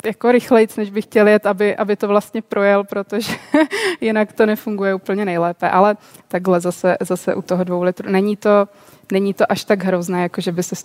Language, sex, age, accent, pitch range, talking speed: Czech, female, 20-39, native, 185-210 Hz, 200 wpm